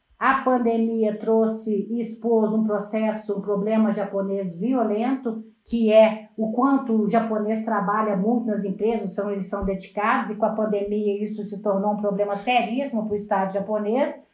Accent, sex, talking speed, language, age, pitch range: Brazilian, female, 160 wpm, Portuguese, 50-69, 210-260 Hz